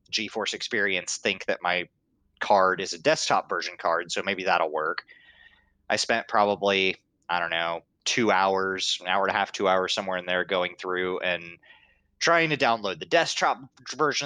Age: 20-39